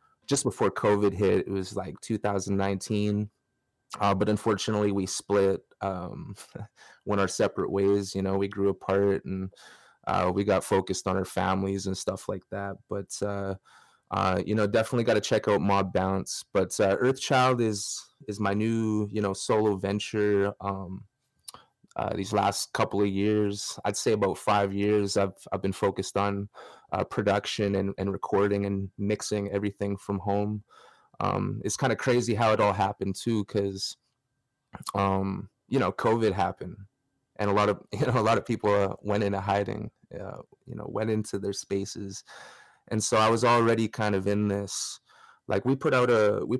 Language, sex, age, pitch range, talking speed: English, male, 20-39, 100-105 Hz, 180 wpm